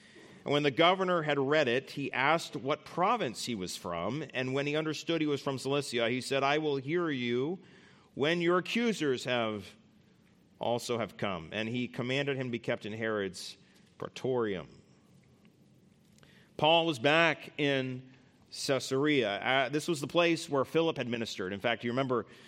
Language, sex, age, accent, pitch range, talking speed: English, male, 40-59, American, 130-155 Hz, 165 wpm